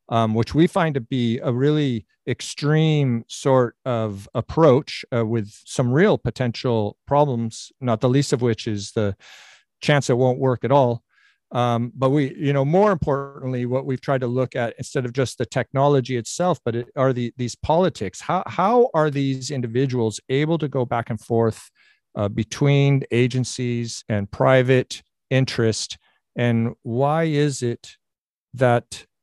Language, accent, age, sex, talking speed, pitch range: English, American, 50-69, male, 160 wpm, 110-135 Hz